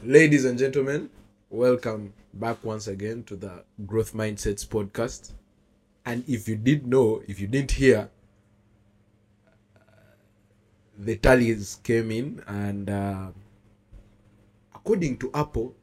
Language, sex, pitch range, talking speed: English, male, 105-125 Hz, 120 wpm